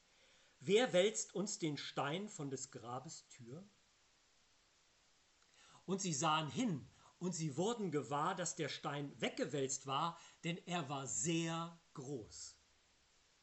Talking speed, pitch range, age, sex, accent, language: 120 wpm, 135-195 Hz, 40-59, male, German, German